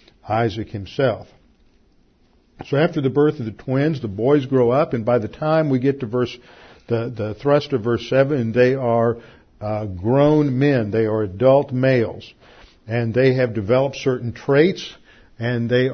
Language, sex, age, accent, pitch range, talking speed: English, male, 50-69, American, 115-135 Hz, 165 wpm